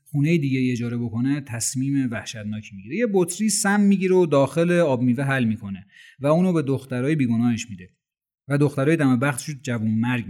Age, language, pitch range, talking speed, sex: 30-49, Persian, 125-170 Hz, 175 wpm, male